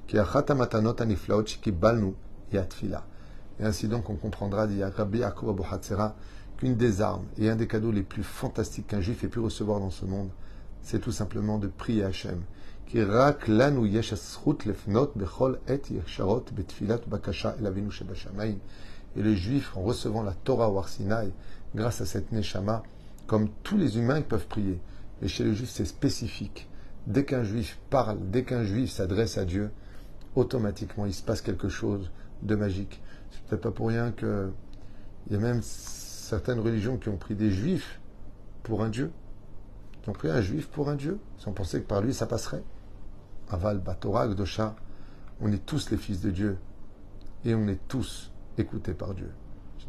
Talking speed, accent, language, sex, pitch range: 150 wpm, French, French, male, 100-115 Hz